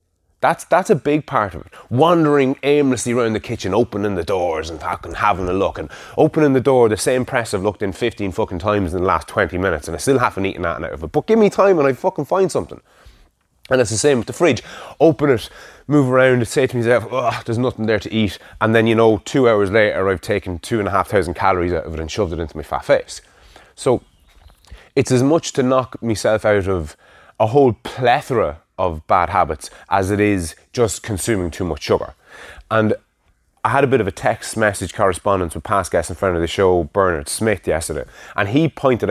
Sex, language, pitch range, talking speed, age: male, English, 95-130 Hz, 230 wpm, 20-39